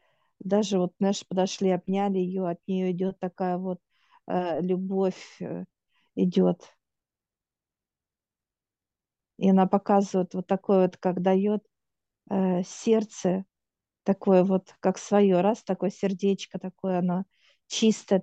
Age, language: 50-69, Russian